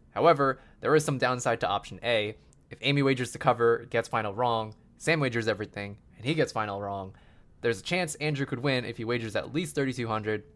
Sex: male